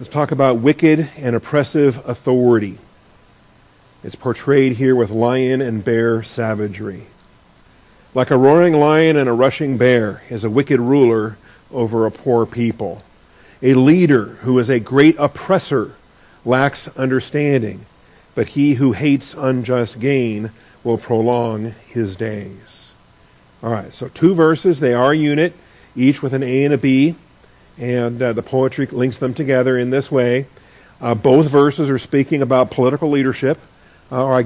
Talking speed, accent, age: 150 wpm, American, 50-69